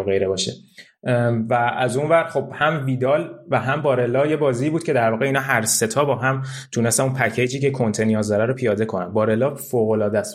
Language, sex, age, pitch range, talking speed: Persian, male, 20-39, 110-135 Hz, 205 wpm